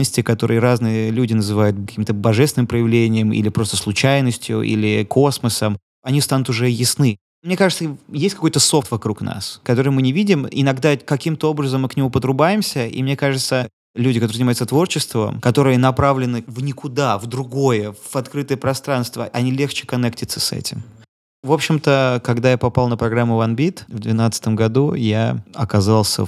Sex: male